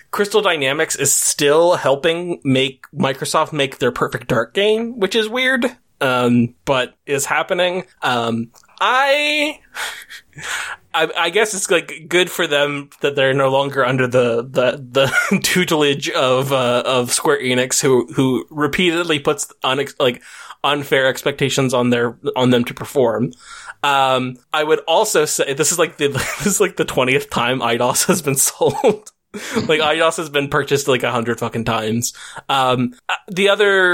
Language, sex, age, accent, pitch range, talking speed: English, male, 20-39, American, 135-195 Hz, 155 wpm